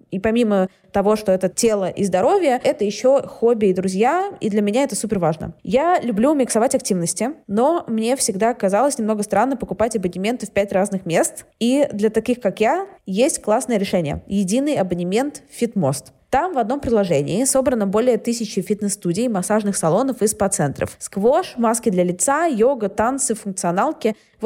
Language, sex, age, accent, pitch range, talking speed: Russian, female, 20-39, native, 190-240 Hz, 160 wpm